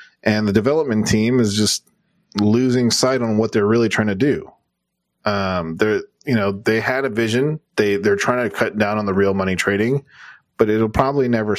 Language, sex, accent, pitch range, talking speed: English, male, American, 100-130 Hz, 195 wpm